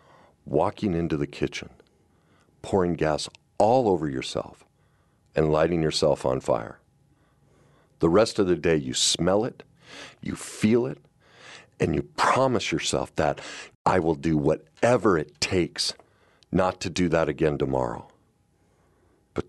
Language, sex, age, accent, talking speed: English, male, 50-69, American, 130 wpm